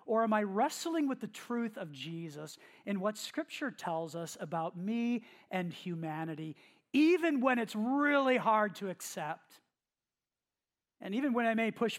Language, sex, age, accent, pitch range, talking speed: English, male, 40-59, American, 175-230 Hz, 155 wpm